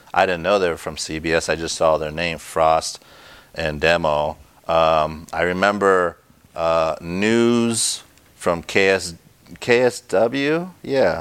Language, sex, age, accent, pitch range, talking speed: English, male, 30-49, American, 80-95 Hz, 130 wpm